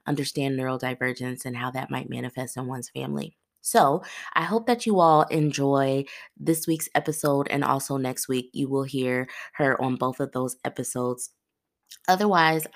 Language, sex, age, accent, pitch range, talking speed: English, female, 20-39, American, 130-155 Hz, 160 wpm